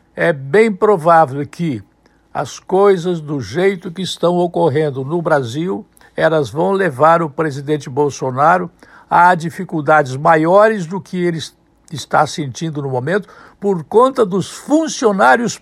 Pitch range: 160-210 Hz